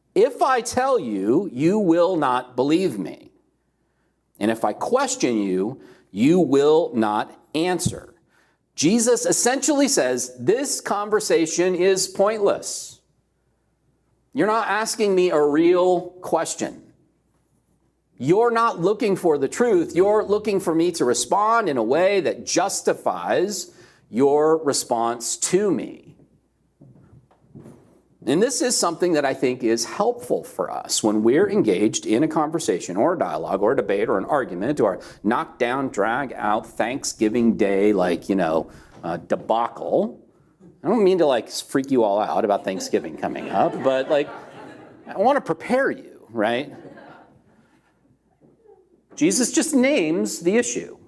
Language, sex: English, male